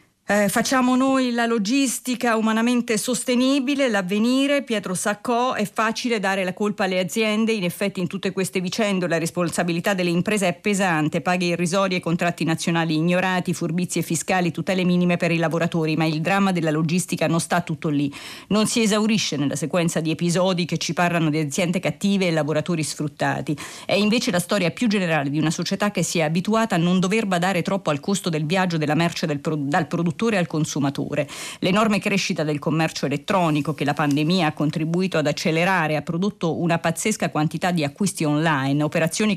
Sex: female